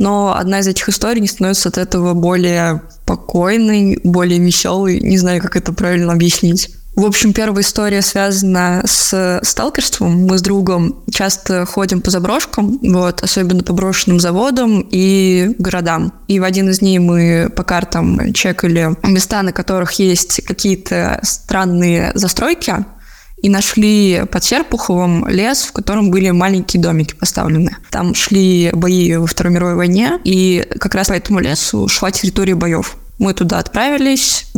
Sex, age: female, 20-39